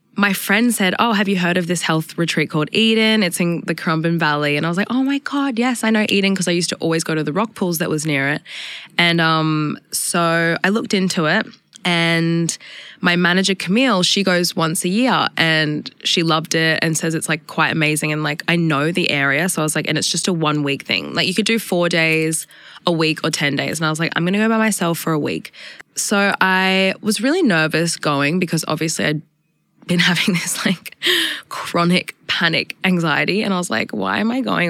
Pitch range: 160-190 Hz